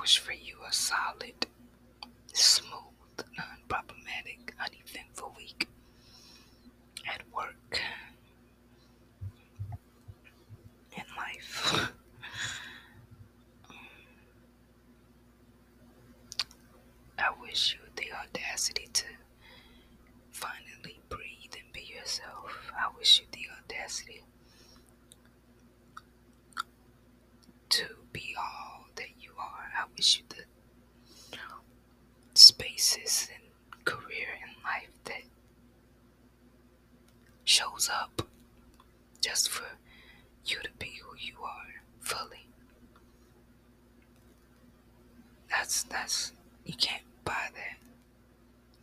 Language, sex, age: English, female, 20-39